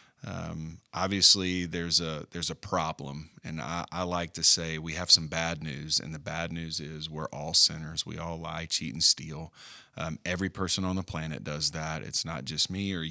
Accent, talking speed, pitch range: American, 205 wpm, 80-95 Hz